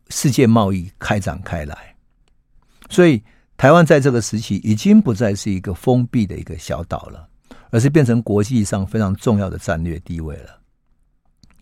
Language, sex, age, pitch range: Chinese, male, 50-69, 90-120 Hz